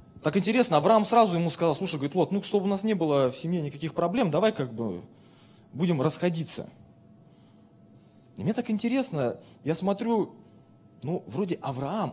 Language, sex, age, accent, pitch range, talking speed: Russian, male, 20-39, native, 135-180 Hz, 165 wpm